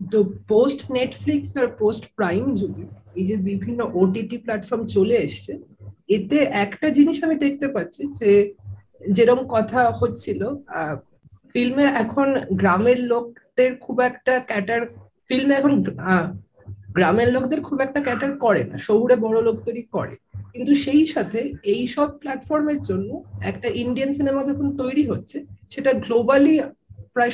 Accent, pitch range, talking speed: native, 200-270 Hz, 70 wpm